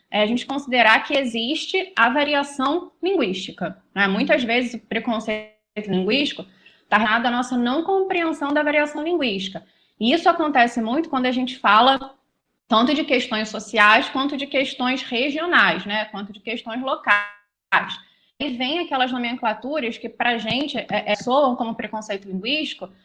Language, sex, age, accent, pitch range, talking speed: Portuguese, female, 20-39, Brazilian, 215-270 Hz, 145 wpm